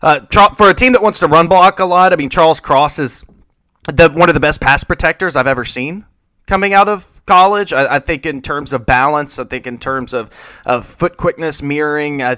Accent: American